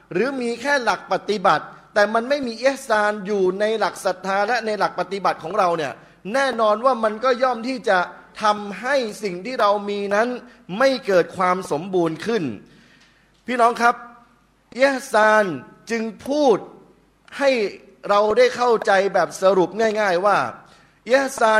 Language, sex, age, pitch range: Thai, male, 20-39, 190-235 Hz